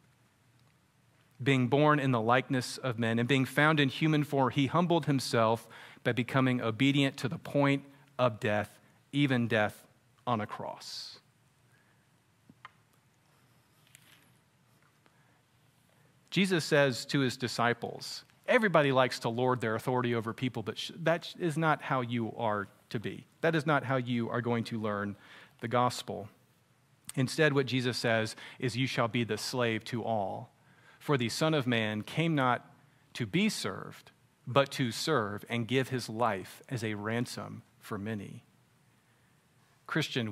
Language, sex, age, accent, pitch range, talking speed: English, male, 40-59, American, 120-145 Hz, 145 wpm